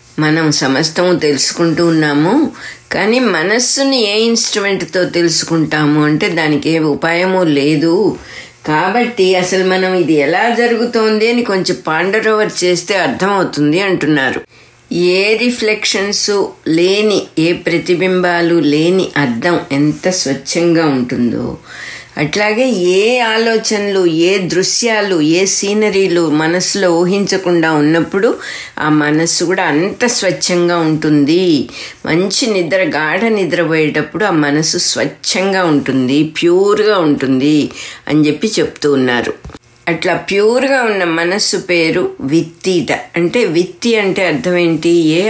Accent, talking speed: Indian, 85 wpm